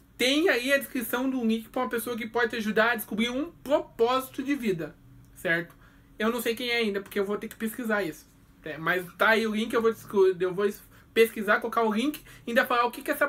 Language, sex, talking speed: Portuguese, male, 245 wpm